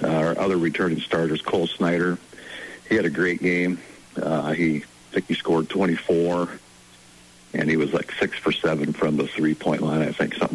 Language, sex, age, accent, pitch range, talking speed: English, male, 60-79, American, 75-90 Hz, 190 wpm